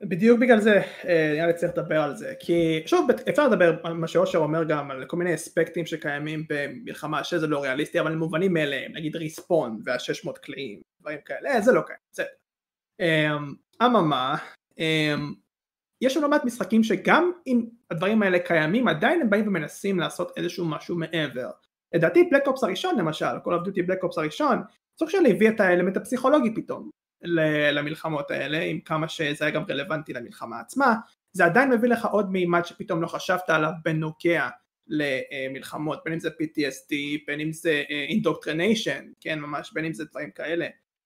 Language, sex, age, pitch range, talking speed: Hebrew, male, 20-39, 155-210 Hz, 165 wpm